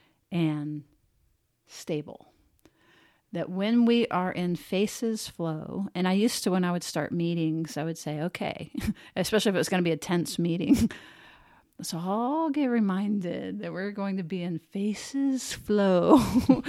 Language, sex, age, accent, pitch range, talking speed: English, female, 50-69, American, 160-210 Hz, 160 wpm